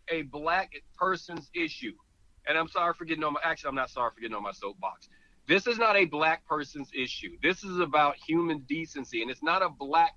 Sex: male